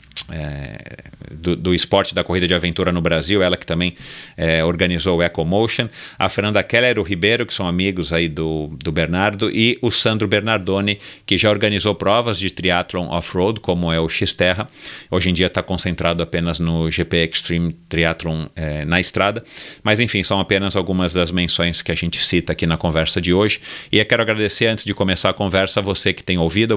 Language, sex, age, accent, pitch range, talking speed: Portuguese, male, 40-59, Brazilian, 85-100 Hz, 195 wpm